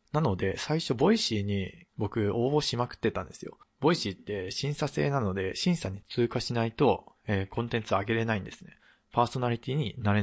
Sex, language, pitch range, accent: male, Japanese, 100-130 Hz, native